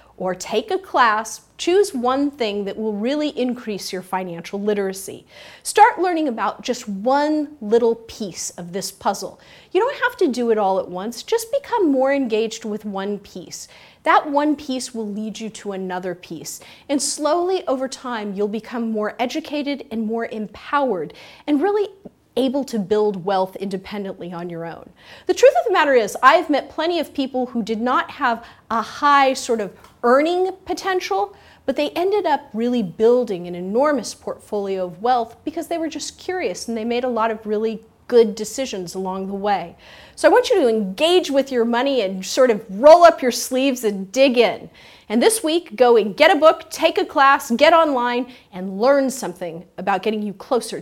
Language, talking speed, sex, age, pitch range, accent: English, 185 wpm, female, 30-49, 205-295 Hz, American